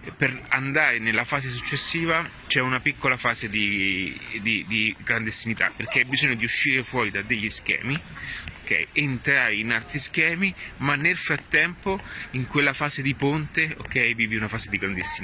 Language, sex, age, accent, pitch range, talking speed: Italian, male, 30-49, native, 110-135 Hz, 155 wpm